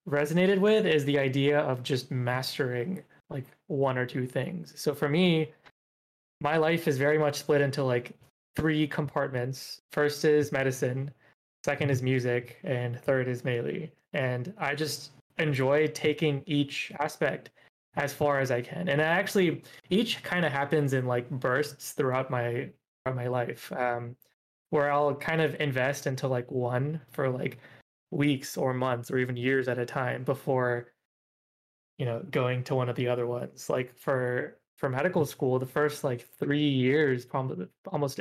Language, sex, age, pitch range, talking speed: English, male, 20-39, 125-150 Hz, 160 wpm